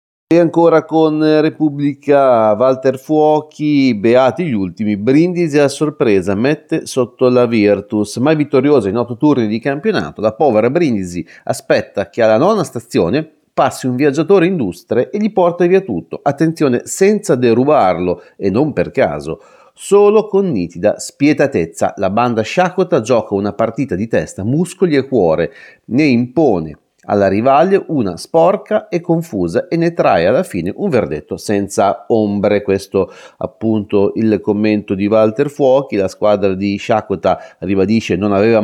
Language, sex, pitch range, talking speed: Italian, male, 100-145 Hz, 145 wpm